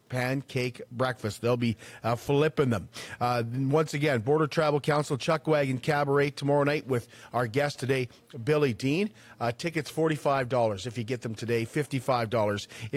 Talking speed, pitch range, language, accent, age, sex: 155 wpm, 120-160 Hz, English, American, 40-59, male